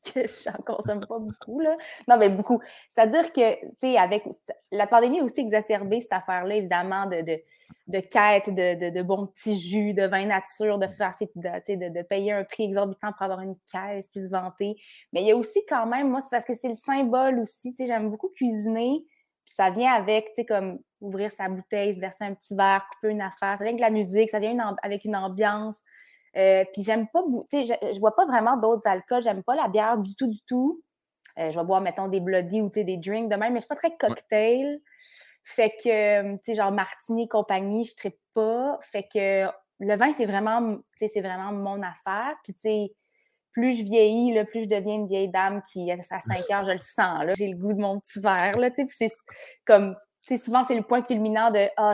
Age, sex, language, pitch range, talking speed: 20-39, female, French, 195-230 Hz, 240 wpm